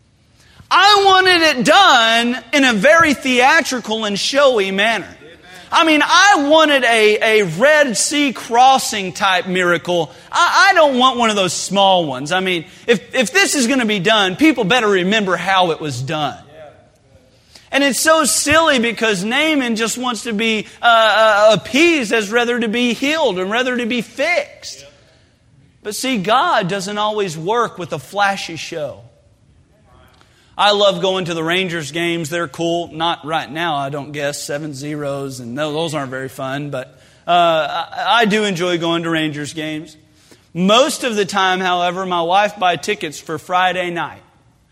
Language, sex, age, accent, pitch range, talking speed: English, male, 40-59, American, 170-240 Hz, 170 wpm